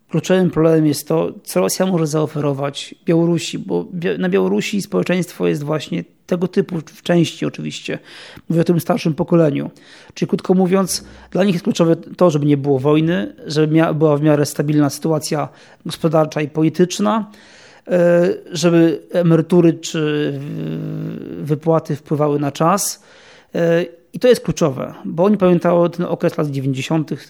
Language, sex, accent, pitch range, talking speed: Polish, male, native, 150-180 Hz, 145 wpm